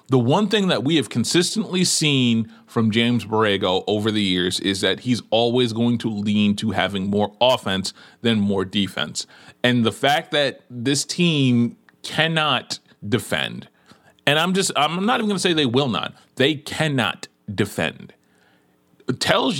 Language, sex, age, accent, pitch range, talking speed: English, male, 30-49, American, 115-195 Hz, 155 wpm